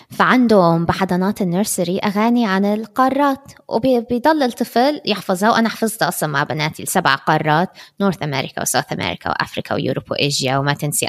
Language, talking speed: Arabic, 135 wpm